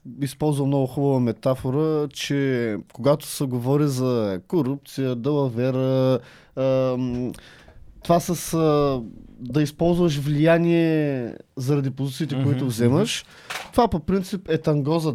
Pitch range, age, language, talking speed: 135-185 Hz, 20-39, Bulgarian, 105 wpm